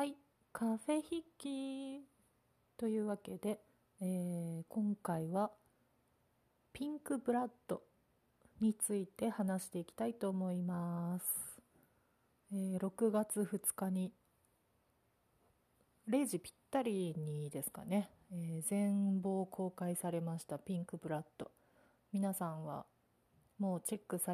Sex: female